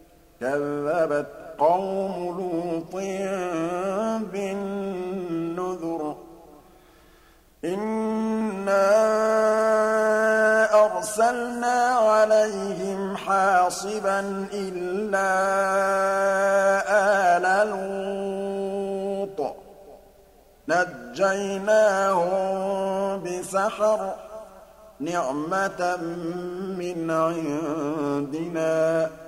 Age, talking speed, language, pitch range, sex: 50-69, 35 wpm, Arabic, 165-195 Hz, male